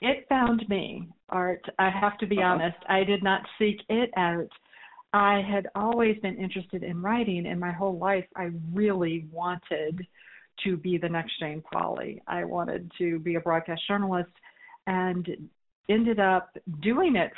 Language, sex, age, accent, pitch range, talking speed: English, female, 40-59, American, 165-195 Hz, 160 wpm